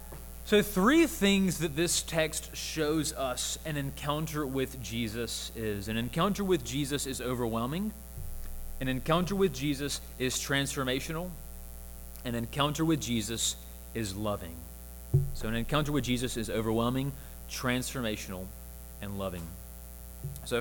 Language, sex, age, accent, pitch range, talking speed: English, male, 30-49, American, 115-165 Hz, 120 wpm